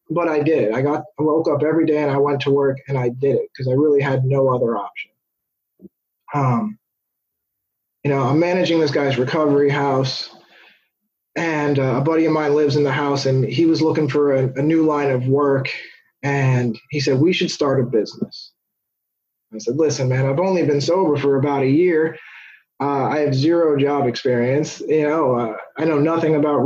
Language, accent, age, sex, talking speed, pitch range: English, American, 20-39, male, 200 wpm, 130-160 Hz